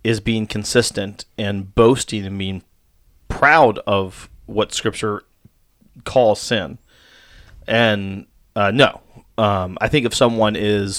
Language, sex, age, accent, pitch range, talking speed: English, male, 30-49, American, 100-120 Hz, 120 wpm